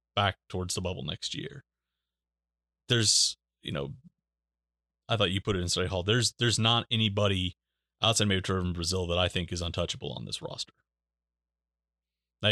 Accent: American